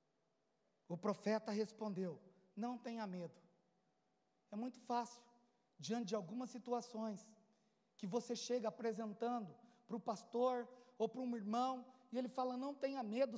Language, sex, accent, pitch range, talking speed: Portuguese, male, Brazilian, 225-320 Hz, 135 wpm